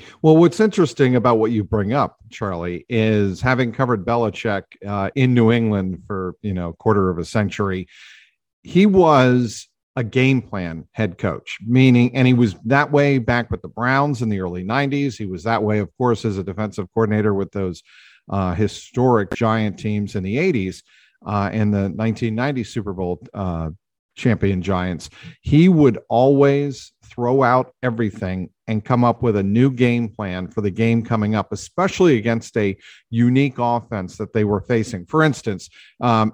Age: 50-69